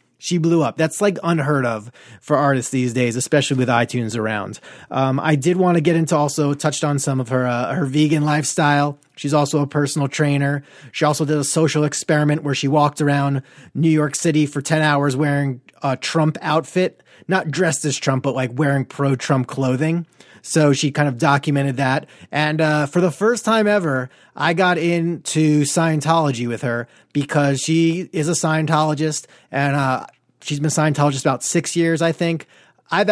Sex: male